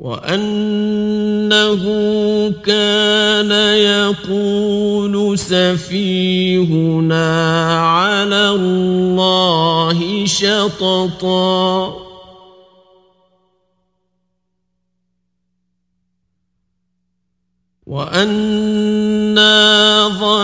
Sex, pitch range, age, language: male, 185-210 Hz, 50-69, Persian